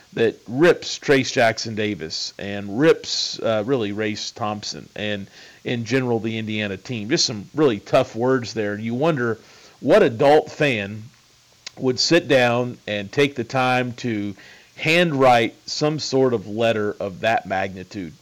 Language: English